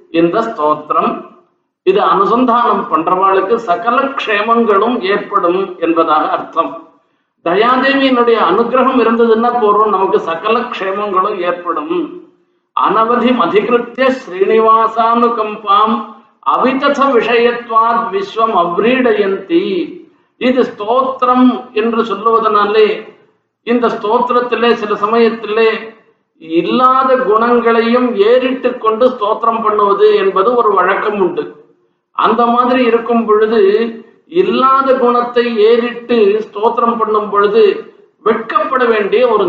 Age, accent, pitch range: 50-69, native, 215-260 Hz